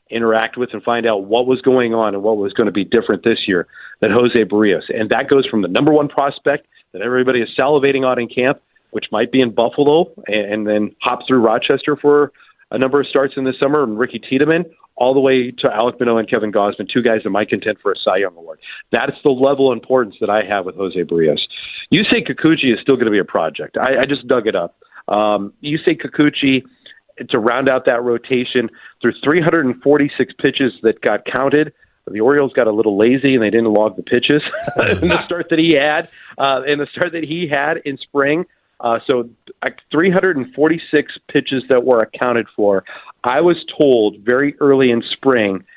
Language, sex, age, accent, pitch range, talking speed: English, male, 40-59, American, 115-145 Hz, 210 wpm